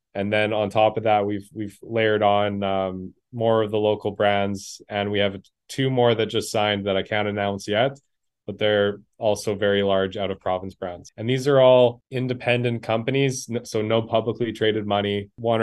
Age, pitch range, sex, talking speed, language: 20-39, 100-115 Hz, male, 190 wpm, English